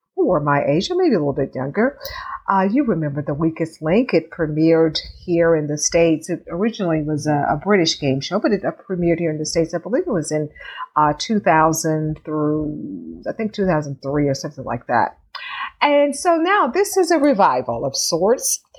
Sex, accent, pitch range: female, American, 155-195 Hz